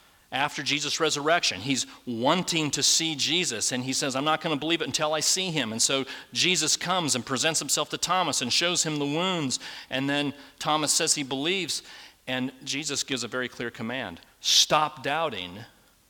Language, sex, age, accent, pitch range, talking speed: English, male, 40-59, American, 140-170 Hz, 185 wpm